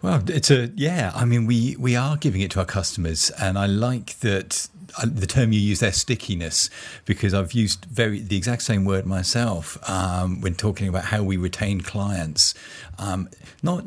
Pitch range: 90-115 Hz